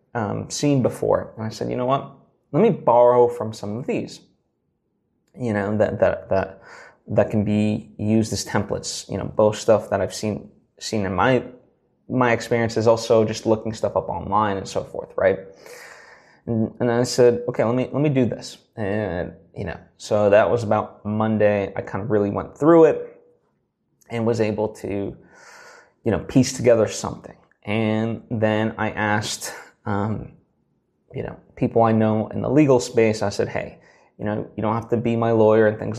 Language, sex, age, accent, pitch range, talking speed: English, male, 20-39, American, 105-120 Hz, 190 wpm